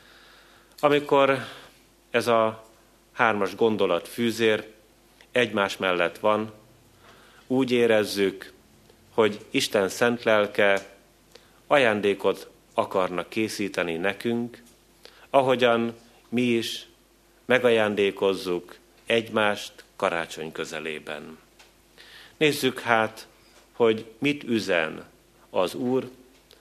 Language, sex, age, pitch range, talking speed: Hungarian, male, 30-49, 95-120 Hz, 75 wpm